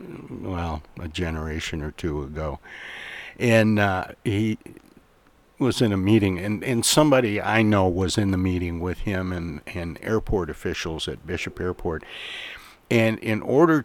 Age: 60-79